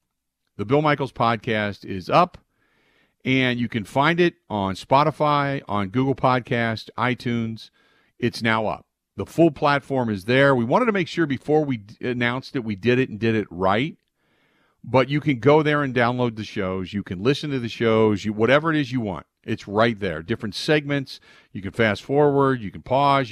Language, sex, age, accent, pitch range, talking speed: English, male, 50-69, American, 100-130 Hz, 195 wpm